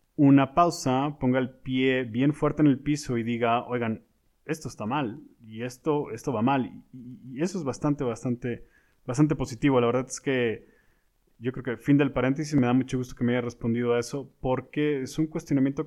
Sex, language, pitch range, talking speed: male, Spanish, 120-145 Hz, 195 wpm